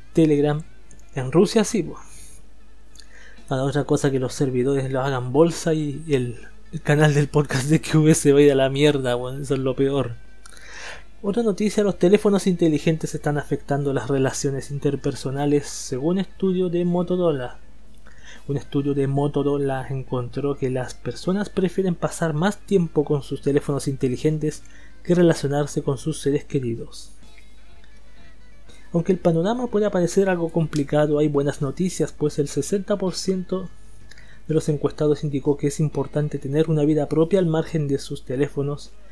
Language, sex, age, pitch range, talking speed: Spanish, male, 20-39, 140-175 Hz, 150 wpm